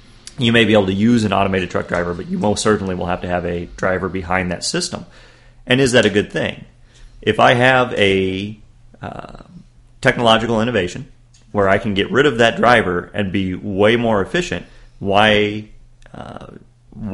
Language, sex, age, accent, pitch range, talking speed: English, male, 30-49, American, 95-120 Hz, 180 wpm